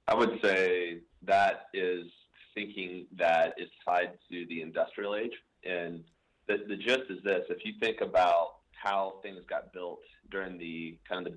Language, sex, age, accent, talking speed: English, male, 30-49, American, 170 wpm